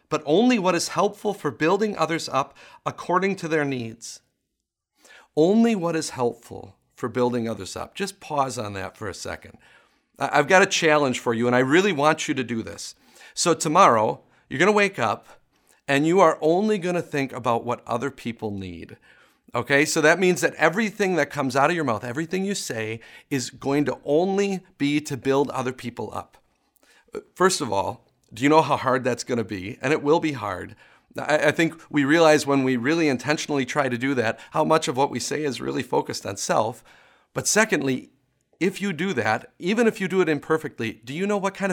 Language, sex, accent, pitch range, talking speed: English, male, American, 130-180 Hz, 205 wpm